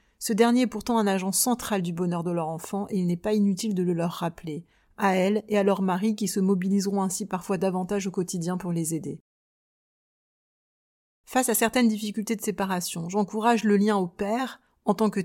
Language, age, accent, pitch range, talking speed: French, 30-49, French, 185-220 Hz, 205 wpm